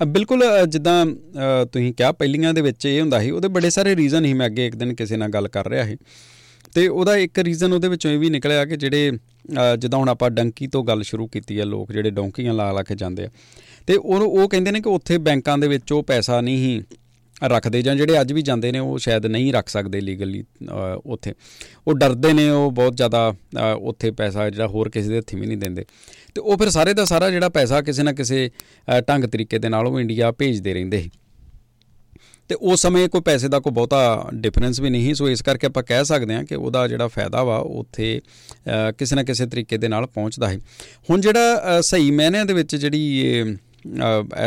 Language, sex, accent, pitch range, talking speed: English, male, Indian, 110-145 Hz, 170 wpm